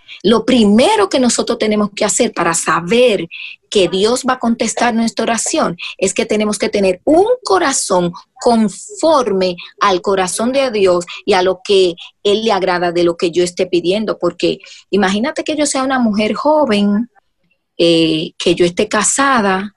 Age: 30-49